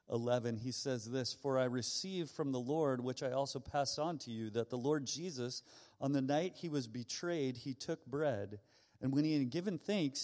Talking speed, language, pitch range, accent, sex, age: 210 wpm, English, 130-155 Hz, American, male, 40-59